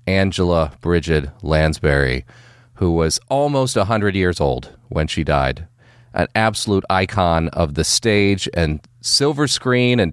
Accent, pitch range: American, 90-130 Hz